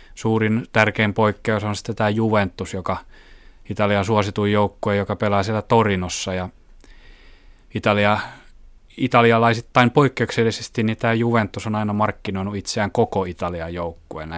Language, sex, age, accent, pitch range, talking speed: Finnish, male, 30-49, native, 90-105 Hz, 120 wpm